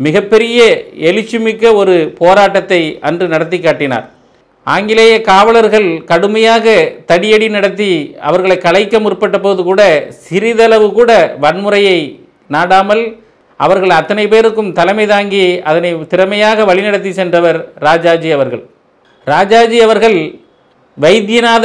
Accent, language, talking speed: native, Tamil, 95 wpm